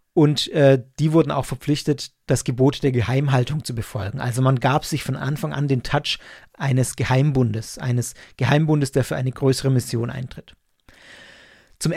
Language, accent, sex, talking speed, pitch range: German, German, male, 160 wpm, 130-170 Hz